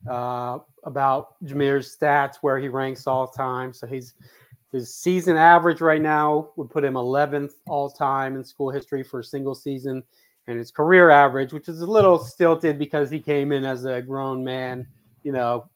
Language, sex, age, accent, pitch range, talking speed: English, male, 30-49, American, 125-145 Hz, 175 wpm